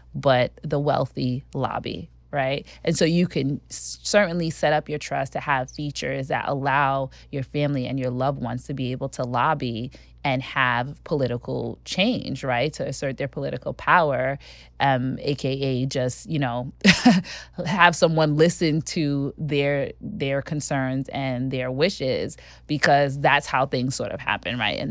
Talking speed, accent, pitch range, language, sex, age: 155 wpm, American, 130-155 Hz, English, female, 20-39